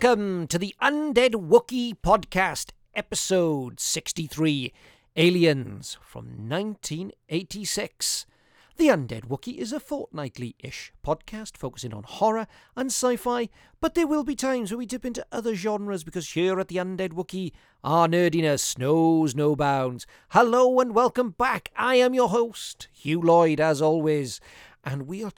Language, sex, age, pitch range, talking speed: English, male, 40-59, 140-195 Hz, 140 wpm